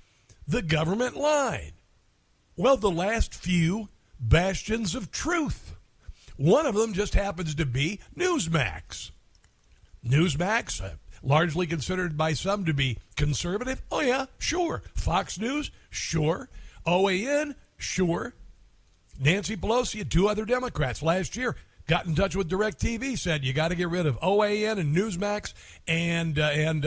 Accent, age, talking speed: American, 60-79, 135 wpm